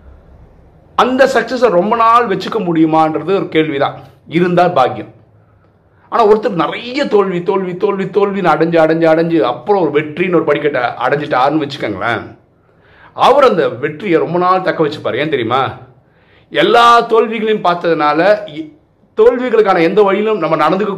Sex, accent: male, native